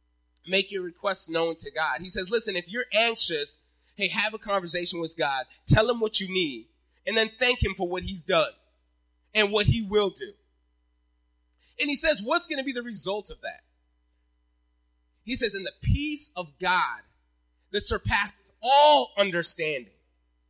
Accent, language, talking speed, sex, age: American, English, 170 wpm, male, 30-49